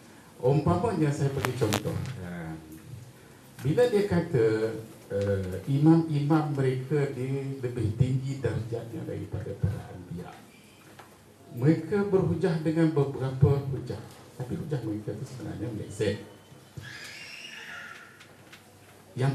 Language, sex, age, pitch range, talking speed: Malay, male, 50-69, 115-150 Hz, 90 wpm